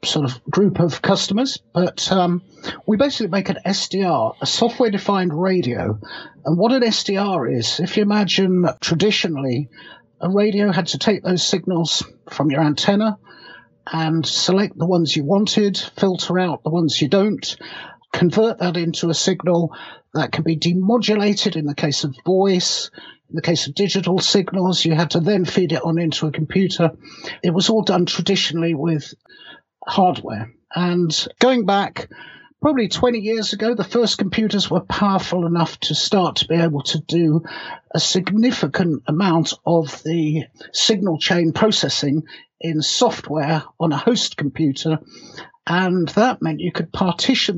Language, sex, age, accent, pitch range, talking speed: English, male, 50-69, British, 160-200 Hz, 155 wpm